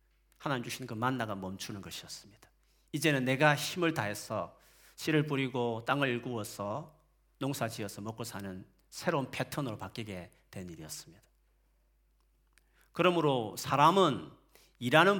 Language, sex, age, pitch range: Korean, male, 40-59, 95-150 Hz